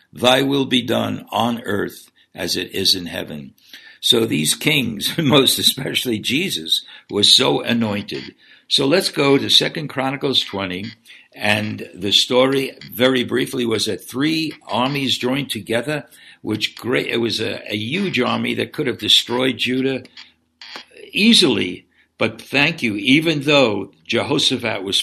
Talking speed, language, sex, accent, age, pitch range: 140 wpm, English, male, American, 60-79, 110-135 Hz